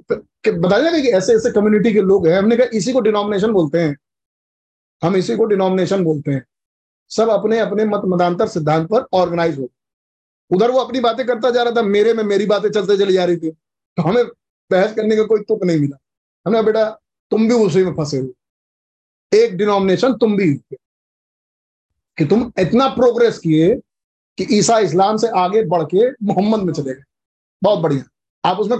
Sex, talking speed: male, 130 wpm